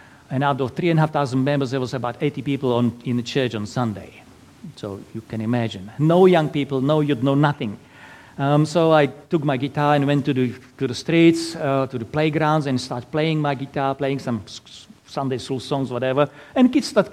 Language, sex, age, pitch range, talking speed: English, male, 50-69, 135-190 Hz, 220 wpm